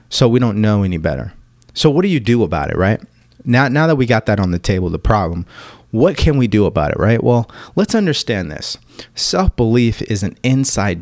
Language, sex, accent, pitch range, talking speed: English, male, American, 100-125 Hz, 220 wpm